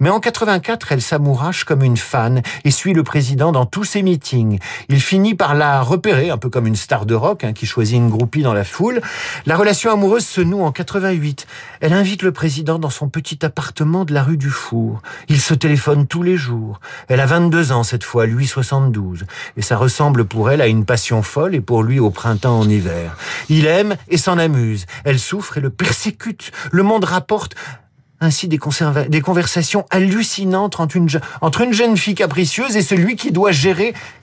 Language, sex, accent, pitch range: French, male, French, 130-185 Hz